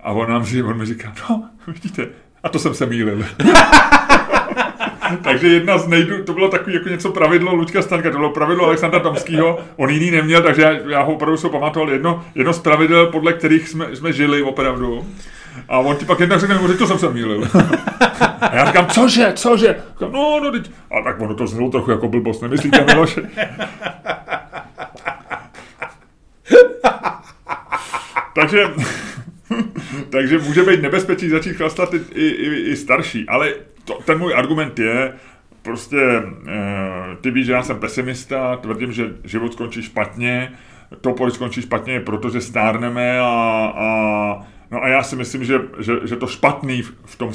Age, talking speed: 30-49, 165 wpm